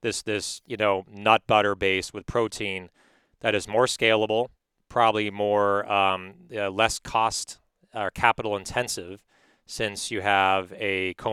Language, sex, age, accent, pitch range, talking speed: English, male, 30-49, American, 100-120 Hz, 150 wpm